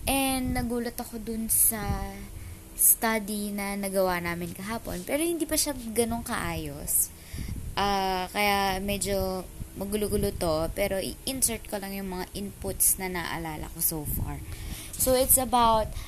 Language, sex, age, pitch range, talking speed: English, female, 20-39, 175-240 Hz, 135 wpm